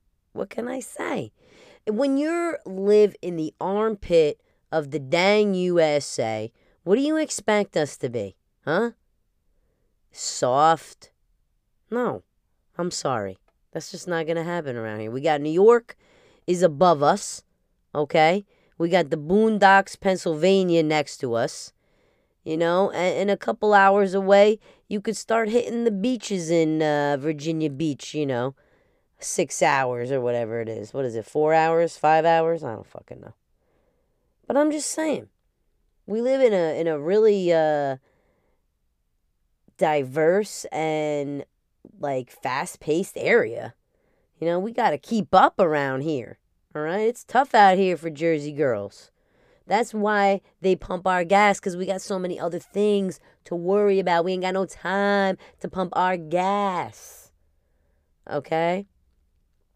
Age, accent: 20-39, American